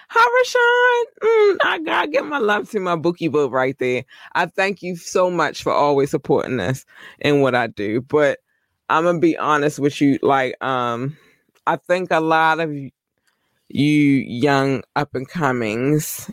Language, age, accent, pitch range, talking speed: English, 20-39, American, 135-155 Hz, 165 wpm